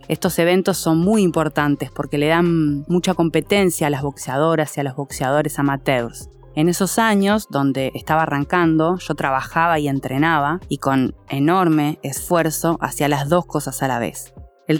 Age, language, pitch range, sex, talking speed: 20-39, Spanish, 140-175 Hz, female, 160 wpm